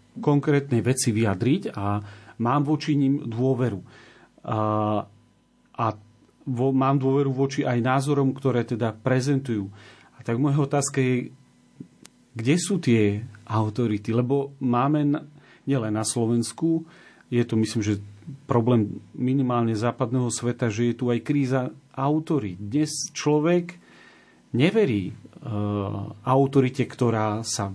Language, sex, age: Slovak, male, 40-59